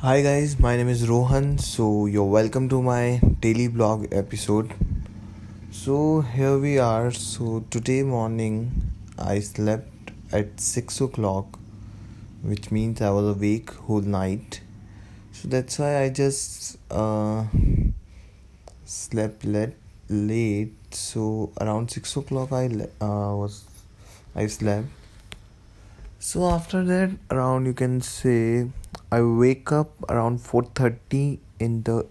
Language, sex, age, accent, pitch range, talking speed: Hindi, male, 20-39, native, 100-120 Hz, 125 wpm